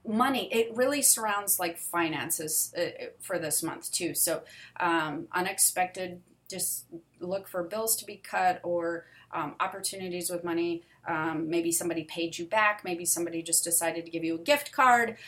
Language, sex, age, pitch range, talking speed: English, female, 30-49, 170-210 Hz, 165 wpm